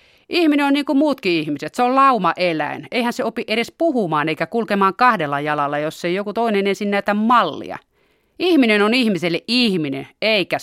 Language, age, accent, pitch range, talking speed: Finnish, 30-49, native, 160-230 Hz, 170 wpm